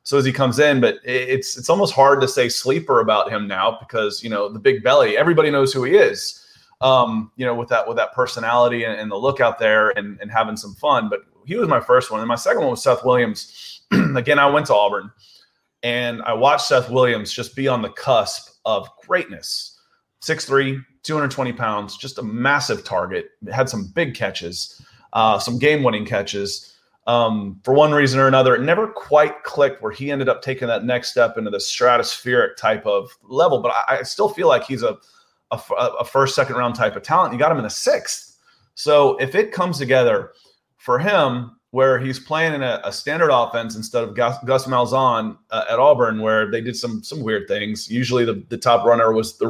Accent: American